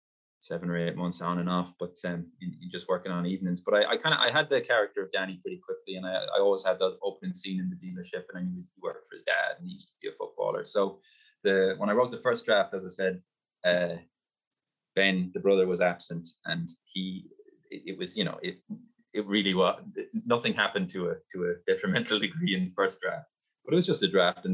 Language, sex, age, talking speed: English, male, 20-39, 250 wpm